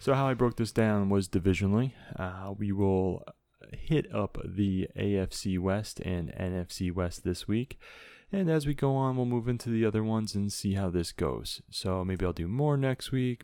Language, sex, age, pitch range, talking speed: English, male, 20-39, 90-115 Hz, 195 wpm